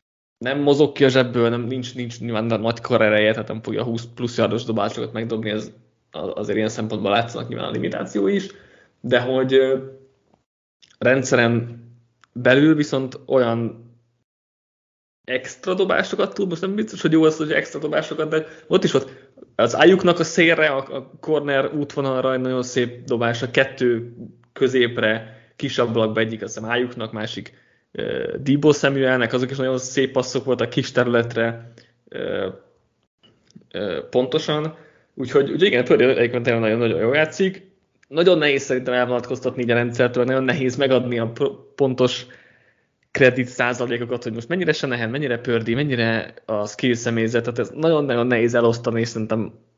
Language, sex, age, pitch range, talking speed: Hungarian, male, 20-39, 115-135 Hz, 145 wpm